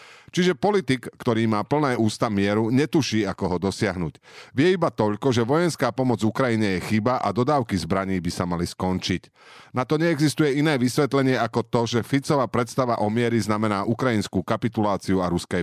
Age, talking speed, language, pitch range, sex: 40-59, 170 wpm, Slovak, 95-125 Hz, male